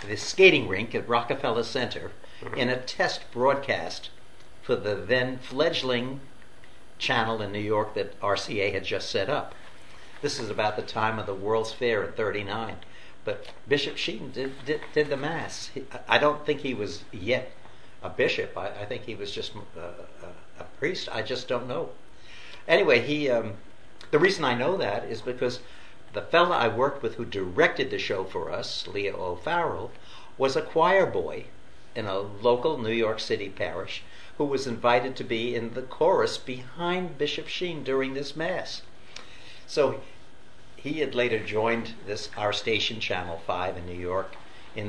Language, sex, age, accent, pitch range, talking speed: English, male, 60-79, American, 110-165 Hz, 170 wpm